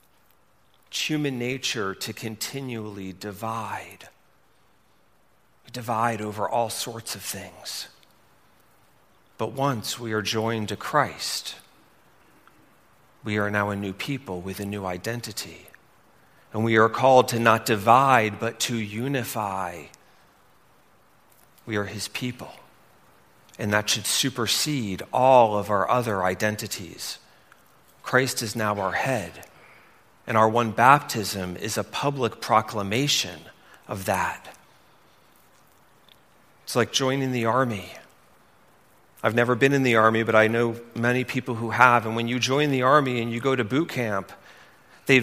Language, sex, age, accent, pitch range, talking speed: English, male, 40-59, American, 105-125 Hz, 130 wpm